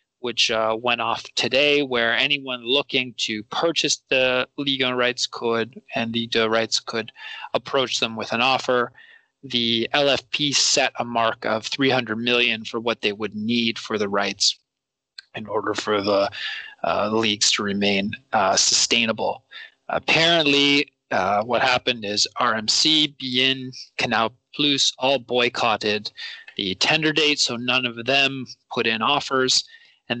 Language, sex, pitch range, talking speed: English, male, 115-135 Hz, 140 wpm